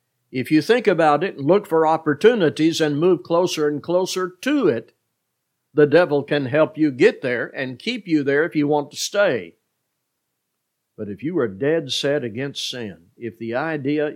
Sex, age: male, 60-79